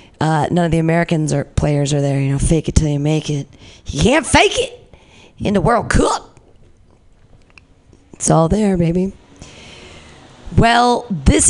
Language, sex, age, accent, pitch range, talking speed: English, female, 40-59, American, 155-215 Hz, 160 wpm